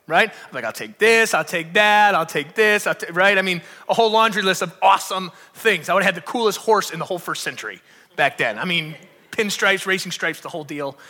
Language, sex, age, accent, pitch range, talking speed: English, male, 30-49, American, 185-255 Hz, 240 wpm